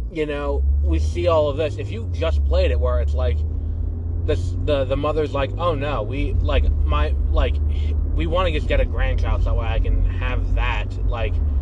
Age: 20-39